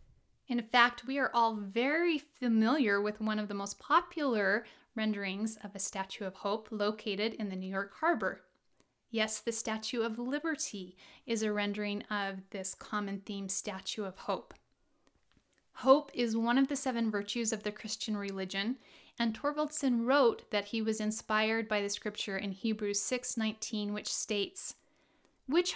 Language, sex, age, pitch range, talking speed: English, female, 30-49, 205-255 Hz, 155 wpm